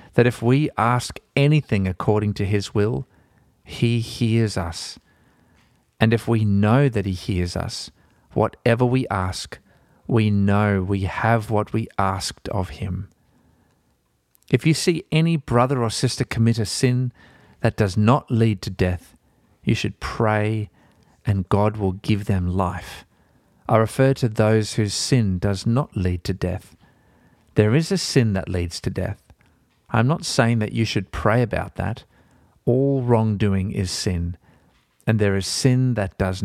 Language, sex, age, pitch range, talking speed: English, male, 40-59, 95-115 Hz, 155 wpm